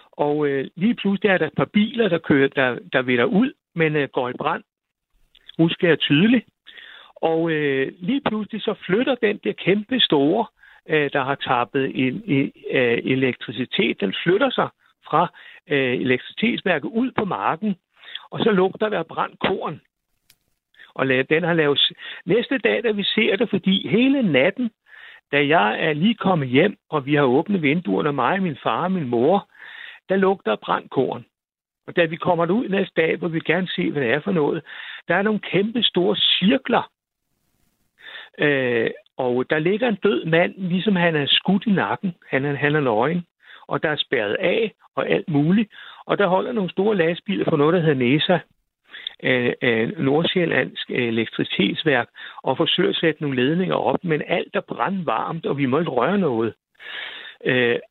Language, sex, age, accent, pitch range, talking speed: Danish, male, 60-79, native, 145-215 Hz, 165 wpm